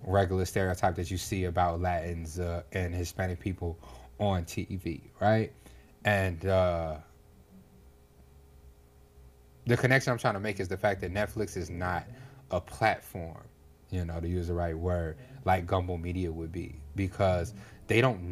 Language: English